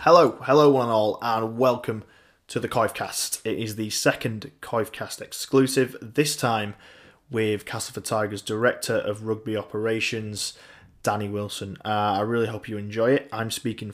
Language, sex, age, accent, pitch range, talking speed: English, male, 20-39, British, 105-120 Hz, 160 wpm